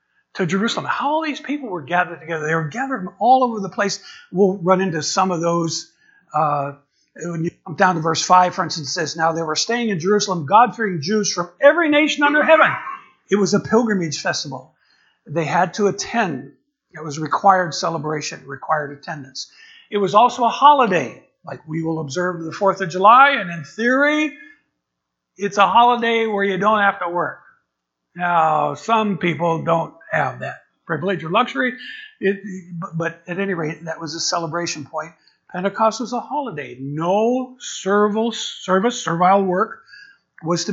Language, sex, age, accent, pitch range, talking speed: English, male, 50-69, American, 165-225 Hz, 175 wpm